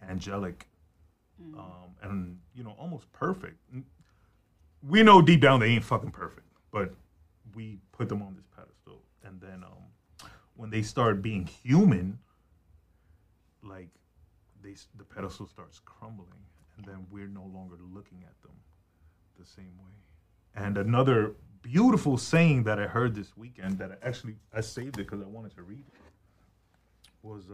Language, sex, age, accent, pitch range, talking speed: English, male, 30-49, American, 90-115 Hz, 150 wpm